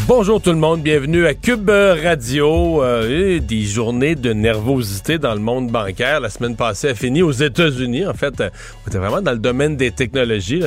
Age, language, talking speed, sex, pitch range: 40-59, French, 195 wpm, male, 105-135 Hz